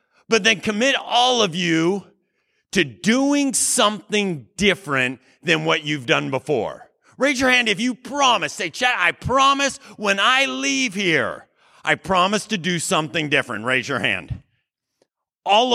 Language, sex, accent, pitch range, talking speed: English, male, American, 140-220 Hz, 150 wpm